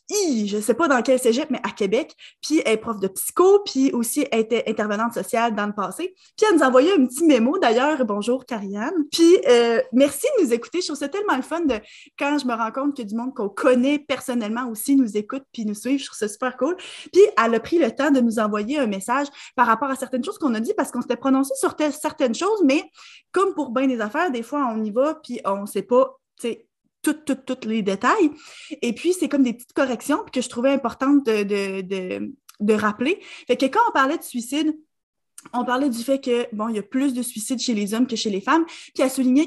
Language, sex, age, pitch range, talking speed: French, female, 20-39, 225-295 Hz, 255 wpm